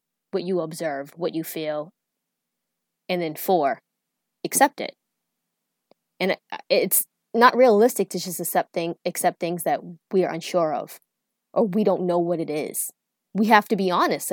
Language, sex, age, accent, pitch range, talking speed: English, female, 20-39, American, 180-240 Hz, 160 wpm